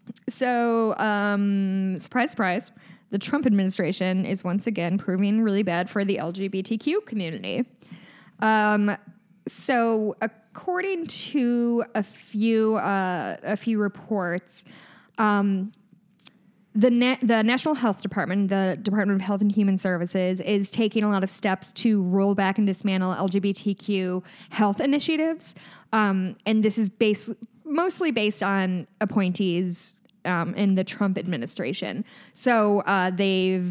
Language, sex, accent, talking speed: English, female, American, 130 wpm